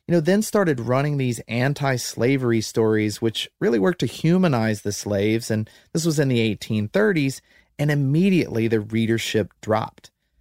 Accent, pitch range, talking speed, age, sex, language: American, 115-150 Hz, 150 wpm, 30-49, male, English